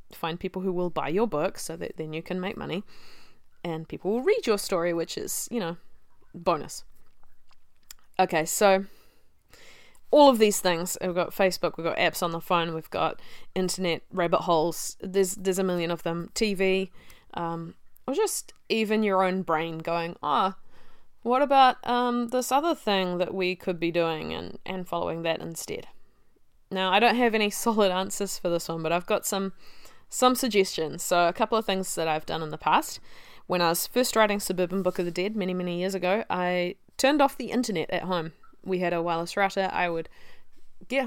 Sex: female